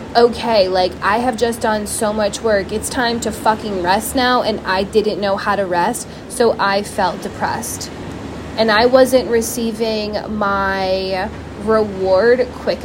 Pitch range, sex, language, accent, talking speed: 200-235 Hz, female, English, American, 155 wpm